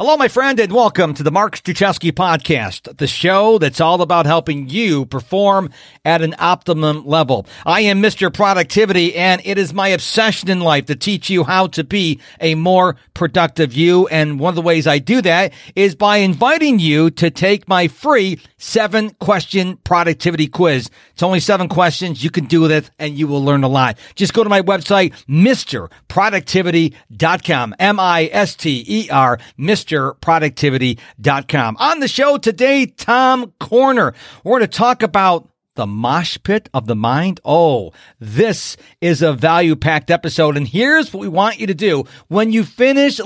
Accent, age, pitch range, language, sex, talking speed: American, 50-69, 155-205 Hz, English, male, 170 wpm